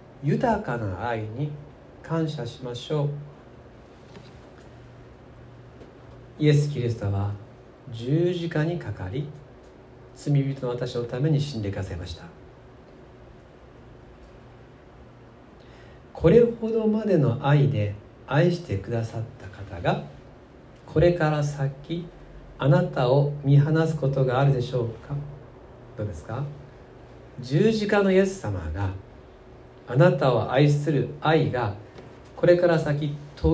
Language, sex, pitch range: Japanese, male, 120-155 Hz